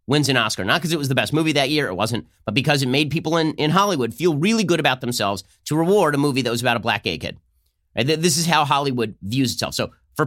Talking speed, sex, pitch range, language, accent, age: 275 wpm, male, 105-145 Hz, English, American, 30-49